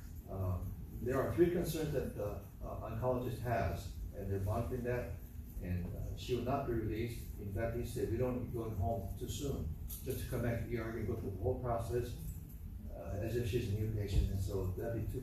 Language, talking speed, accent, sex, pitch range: English, 235 wpm, American, male, 95-115 Hz